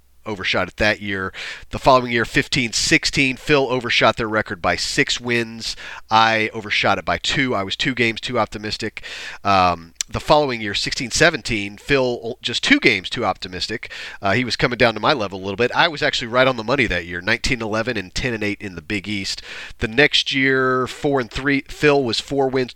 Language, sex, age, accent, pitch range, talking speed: English, male, 40-59, American, 100-135 Hz, 200 wpm